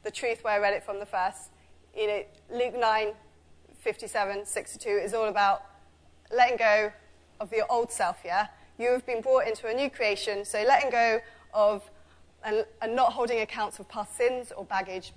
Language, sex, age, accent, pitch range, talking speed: English, female, 20-39, British, 190-245 Hz, 180 wpm